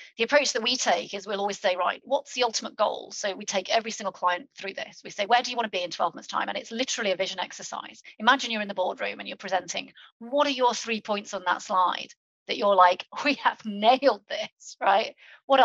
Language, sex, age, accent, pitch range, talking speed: English, female, 40-59, British, 195-245 Hz, 250 wpm